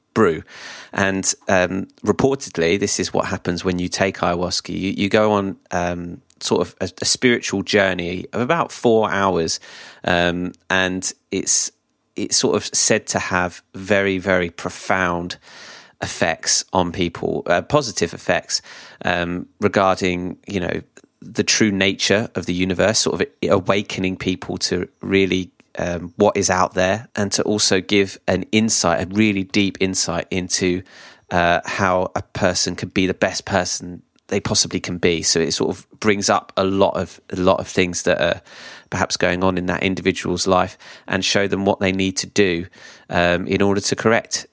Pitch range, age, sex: 90-100 Hz, 30-49, male